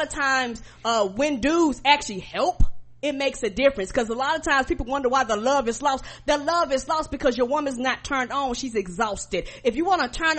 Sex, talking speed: female, 230 wpm